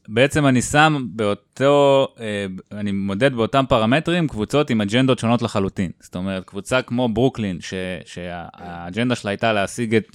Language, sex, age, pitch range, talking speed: Hebrew, male, 20-39, 100-130 Hz, 140 wpm